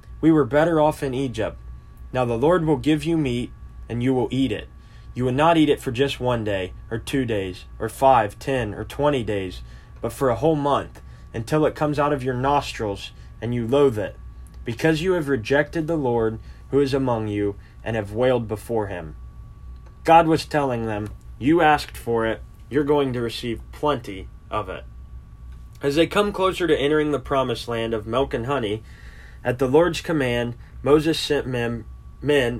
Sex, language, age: male, English, 20-39